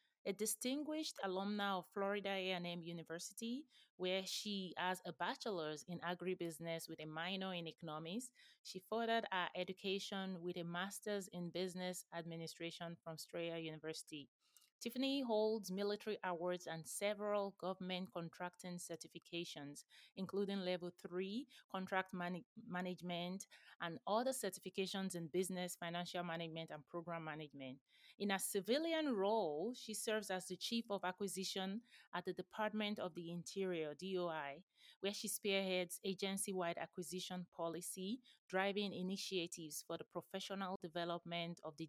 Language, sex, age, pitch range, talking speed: English, female, 20-39, 170-210 Hz, 125 wpm